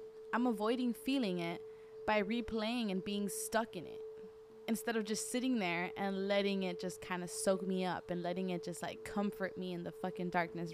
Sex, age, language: female, 20-39, English